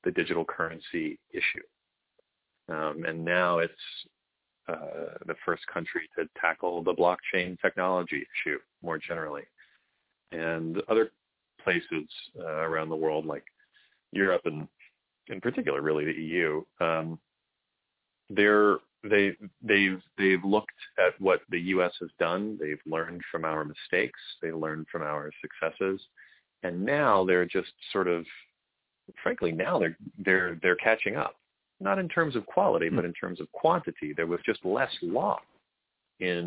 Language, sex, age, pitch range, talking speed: English, male, 30-49, 80-95 Hz, 140 wpm